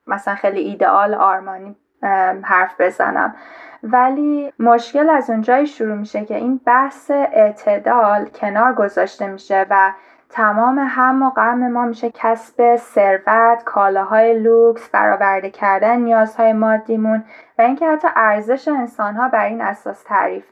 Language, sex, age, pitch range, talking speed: Persian, female, 10-29, 205-250 Hz, 125 wpm